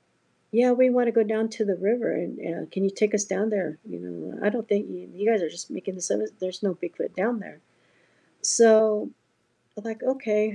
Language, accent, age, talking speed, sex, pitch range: English, American, 60-79, 220 wpm, female, 195-225 Hz